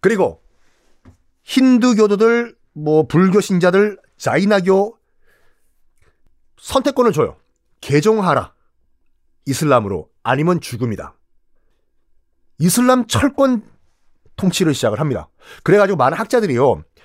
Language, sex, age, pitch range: Korean, male, 40-59, 150-245 Hz